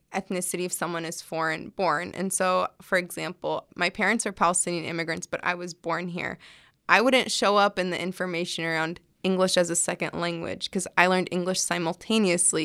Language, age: English, 20-39